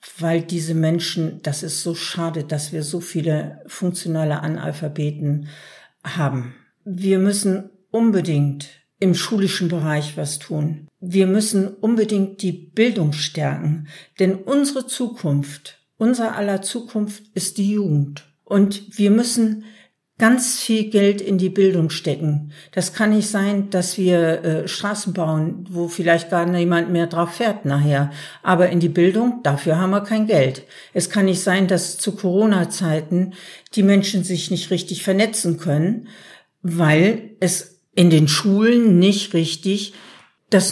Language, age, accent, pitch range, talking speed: German, 60-79, German, 160-200 Hz, 140 wpm